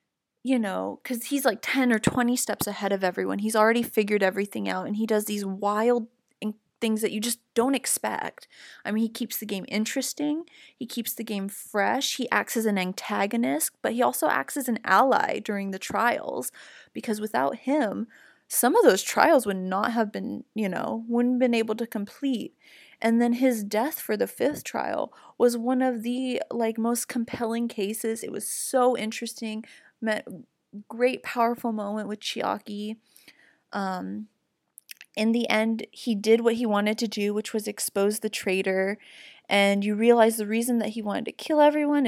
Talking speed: 180 wpm